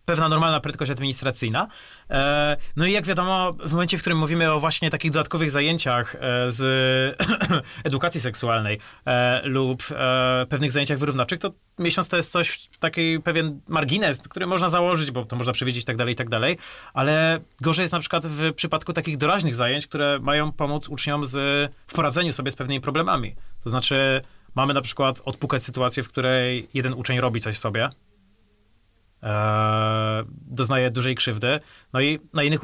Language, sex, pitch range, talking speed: Polish, male, 125-160 Hz, 160 wpm